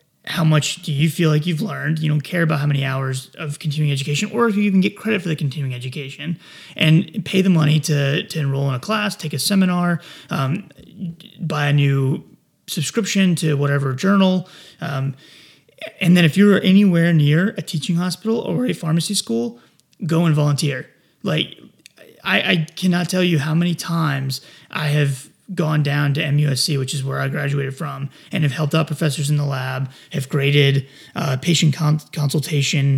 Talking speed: 185 wpm